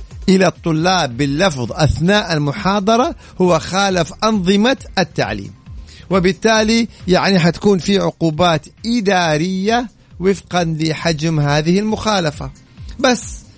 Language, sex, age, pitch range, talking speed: Arabic, male, 50-69, 150-195 Hz, 90 wpm